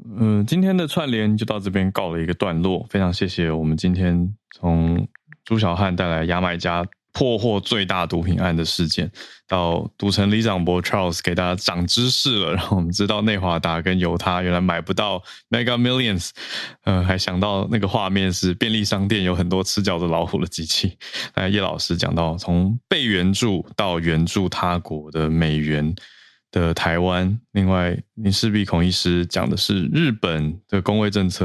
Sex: male